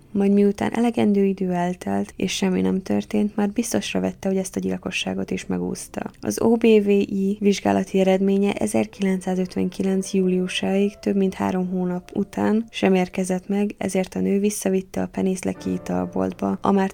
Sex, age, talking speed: female, 10-29, 145 wpm